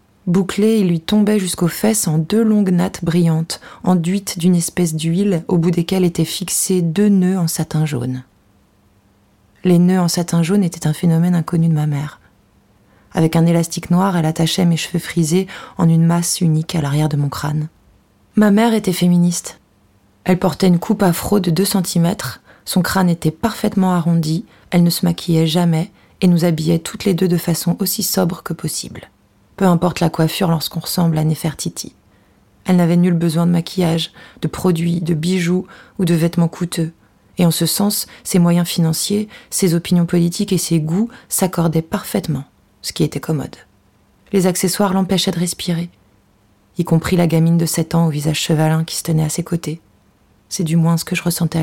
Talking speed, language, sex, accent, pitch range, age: 185 wpm, French, female, French, 160-185 Hz, 20-39